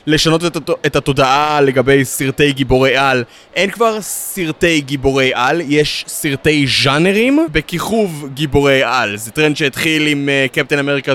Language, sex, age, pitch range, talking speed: Hebrew, male, 20-39, 140-165 Hz, 130 wpm